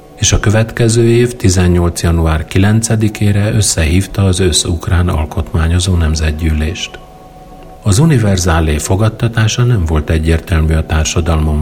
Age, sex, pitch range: 50-69, male, 80-110 Hz